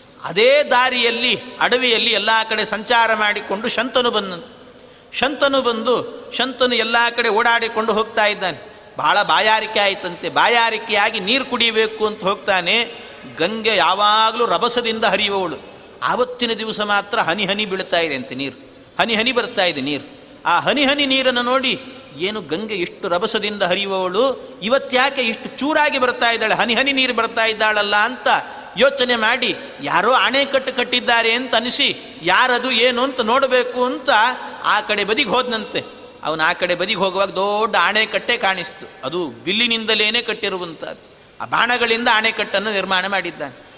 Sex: male